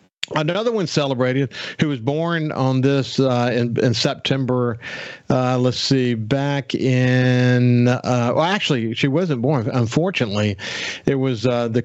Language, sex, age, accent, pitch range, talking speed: English, male, 50-69, American, 115-145 Hz, 140 wpm